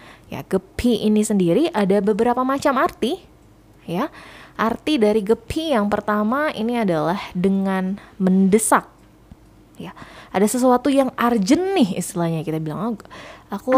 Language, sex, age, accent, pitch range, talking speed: Indonesian, female, 20-39, native, 185-250 Hz, 125 wpm